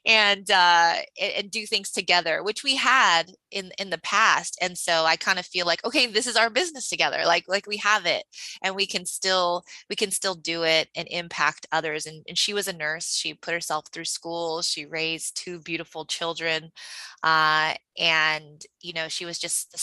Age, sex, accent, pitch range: 20-39, female, American, 155-180 Hz